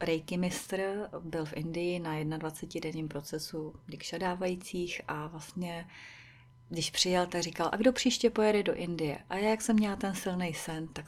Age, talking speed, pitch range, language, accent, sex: 30-49, 170 wpm, 155-185 Hz, Czech, native, female